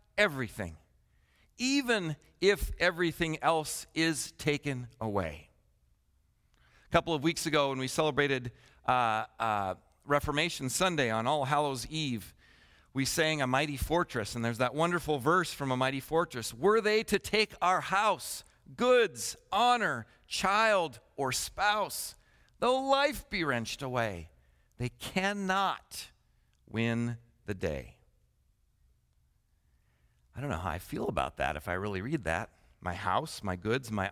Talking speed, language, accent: 135 wpm, English, American